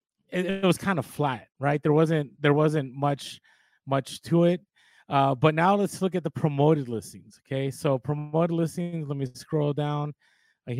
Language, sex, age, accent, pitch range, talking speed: English, male, 30-49, American, 130-170 Hz, 180 wpm